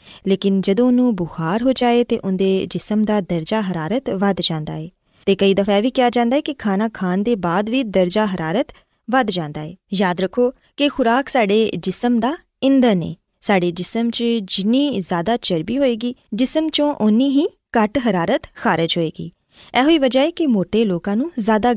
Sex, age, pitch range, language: female, 20-39, 190-255 Hz, Urdu